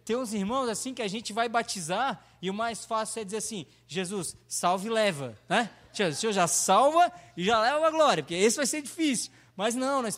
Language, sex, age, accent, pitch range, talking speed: Portuguese, male, 20-39, Brazilian, 120-185 Hz, 225 wpm